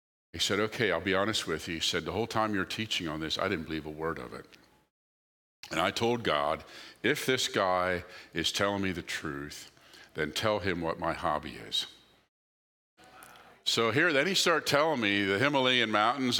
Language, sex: English, male